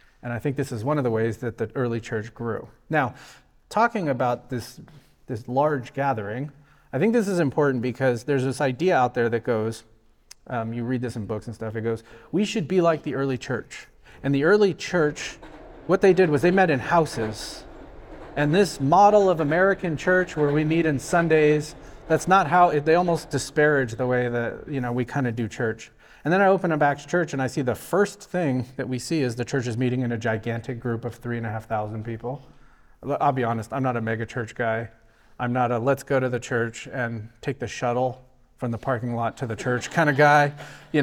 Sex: male